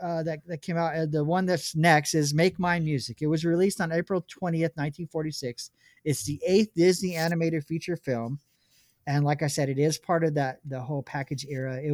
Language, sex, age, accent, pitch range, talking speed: English, male, 40-59, American, 130-170 Hz, 210 wpm